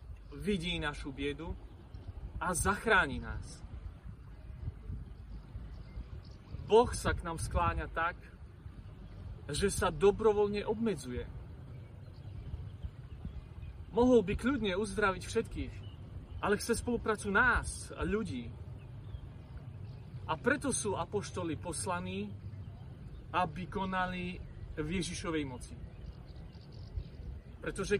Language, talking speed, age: Slovak, 80 wpm, 40-59